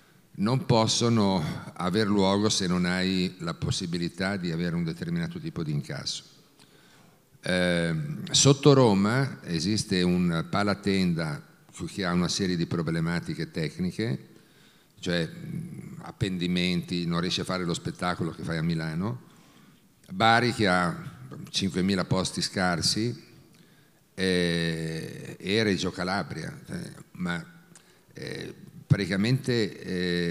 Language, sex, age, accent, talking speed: Italian, male, 50-69, native, 110 wpm